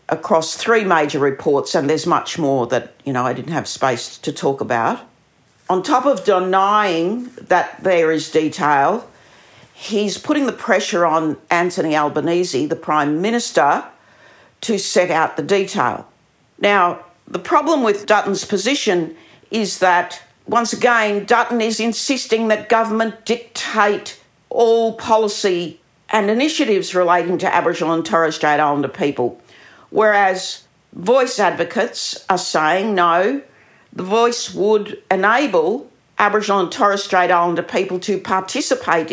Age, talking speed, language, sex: 50-69, 135 wpm, English, female